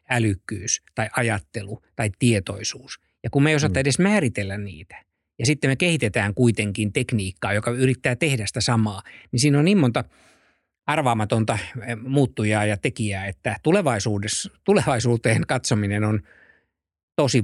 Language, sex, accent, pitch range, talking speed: Finnish, male, native, 105-125 Hz, 130 wpm